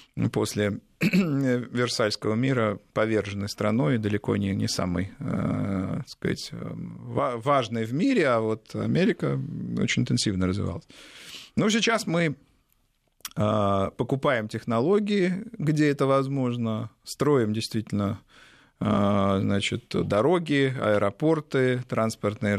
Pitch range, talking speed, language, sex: 105-150 Hz, 100 wpm, Russian, male